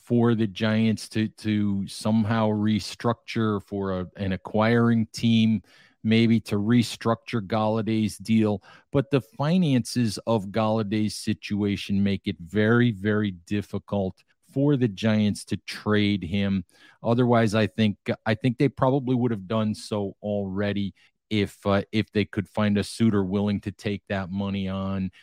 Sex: male